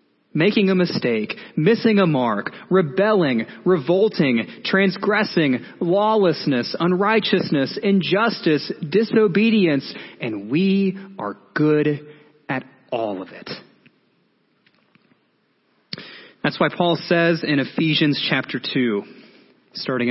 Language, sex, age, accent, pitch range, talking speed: English, male, 30-49, American, 135-190 Hz, 90 wpm